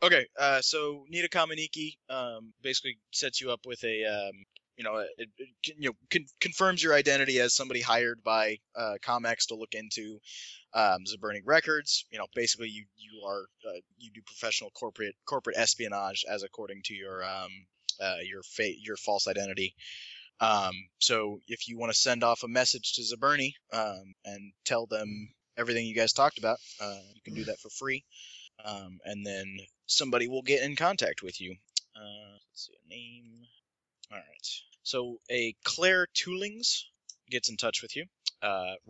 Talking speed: 175 wpm